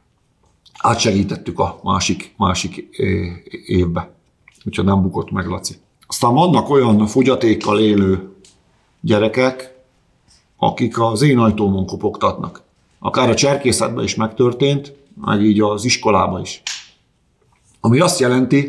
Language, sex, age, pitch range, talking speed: Hungarian, male, 50-69, 100-130 Hz, 110 wpm